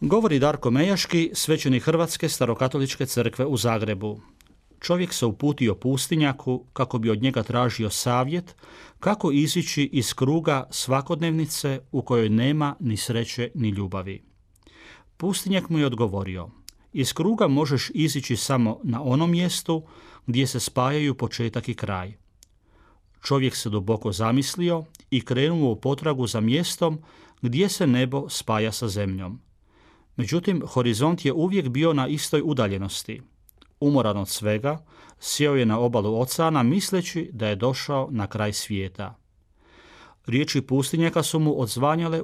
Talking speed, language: 130 wpm, Croatian